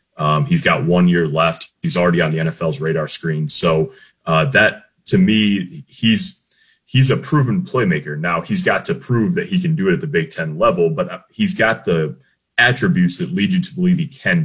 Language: English